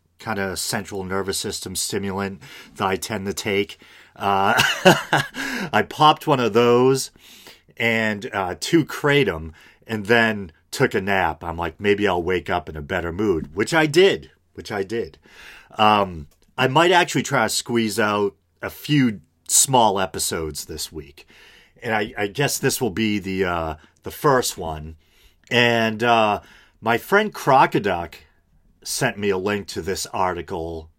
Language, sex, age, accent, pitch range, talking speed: English, male, 40-59, American, 90-135 Hz, 155 wpm